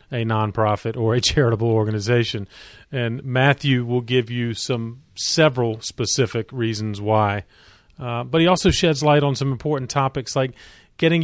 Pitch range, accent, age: 115-145 Hz, American, 40-59